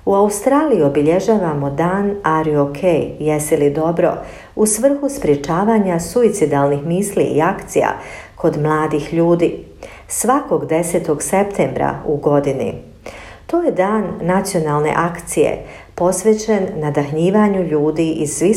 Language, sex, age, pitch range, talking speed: Croatian, female, 50-69, 150-195 Hz, 115 wpm